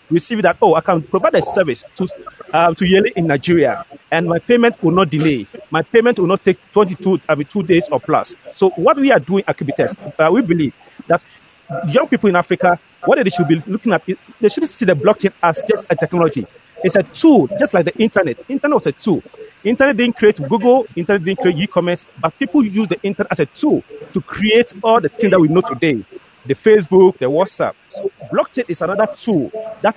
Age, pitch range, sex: 40-59, 170-240 Hz, male